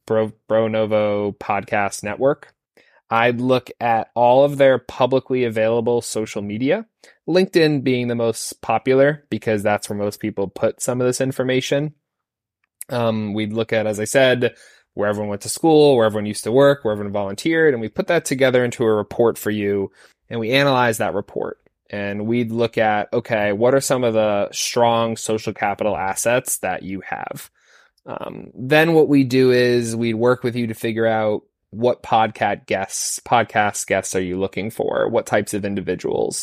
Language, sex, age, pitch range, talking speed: English, male, 20-39, 105-125 Hz, 180 wpm